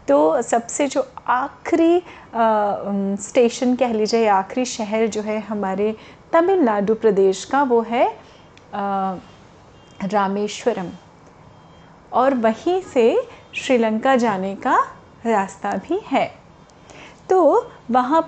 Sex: female